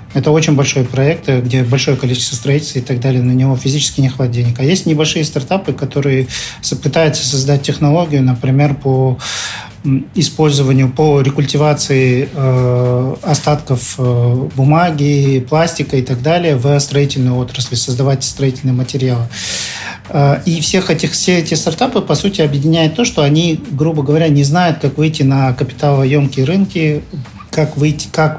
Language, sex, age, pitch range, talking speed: Russian, male, 40-59, 130-155 Hz, 135 wpm